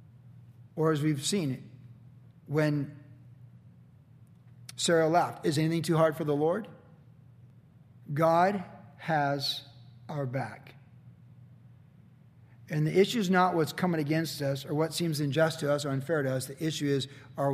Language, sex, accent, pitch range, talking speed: English, male, American, 130-155 Hz, 140 wpm